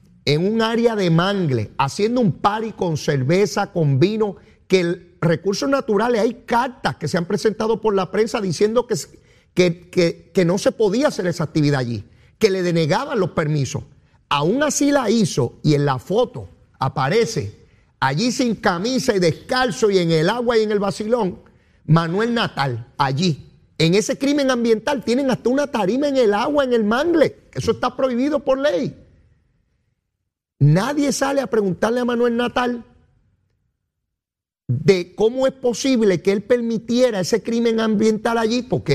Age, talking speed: 40-59, 160 wpm